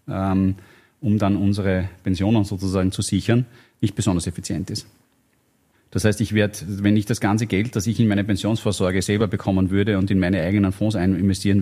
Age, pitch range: 30-49, 95-115 Hz